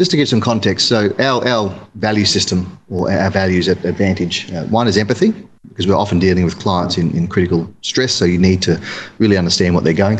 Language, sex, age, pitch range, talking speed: English, male, 30-49, 90-110 Hz, 225 wpm